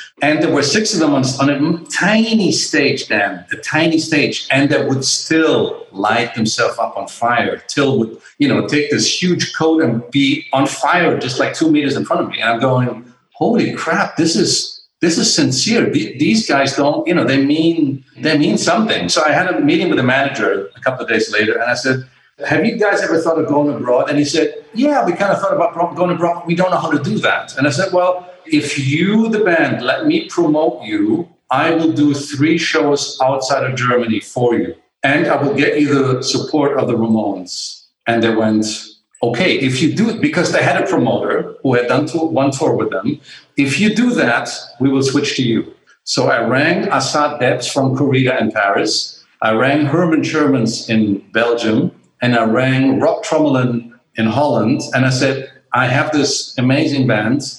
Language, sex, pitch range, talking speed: English, male, 130-165 Hz, 205 wpm